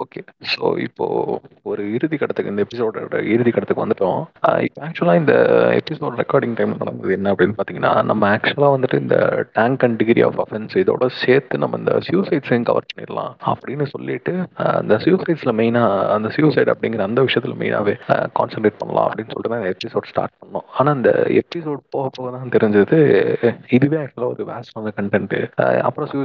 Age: 30-49